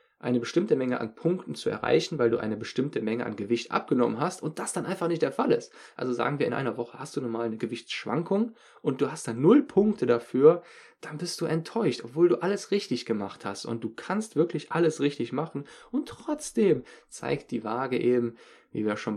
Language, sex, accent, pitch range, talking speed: German, male, German, 115-170 Hz, 215 wpm